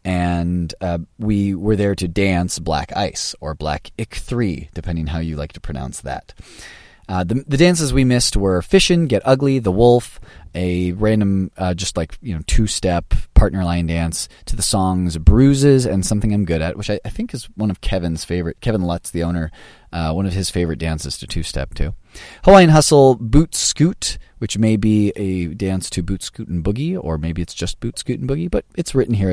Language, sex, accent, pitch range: English, male, American, 85-130 Hz